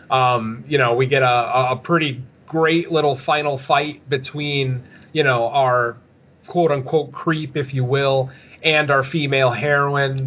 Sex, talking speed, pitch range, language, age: male, 145 wpm, 135-170 Hz, English, 30-49